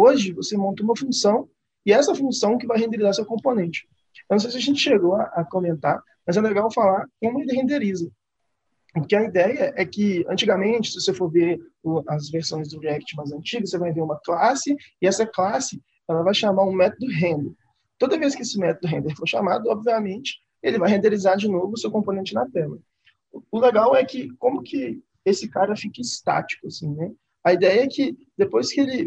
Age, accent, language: 20-39, Brazilian, Portuguese